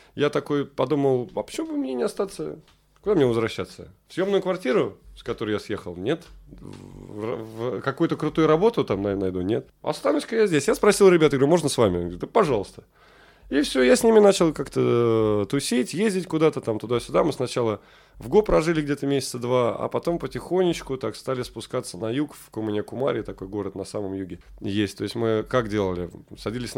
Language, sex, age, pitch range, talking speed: Russian, male, 20-39, 110-150 Hz, 180 wpm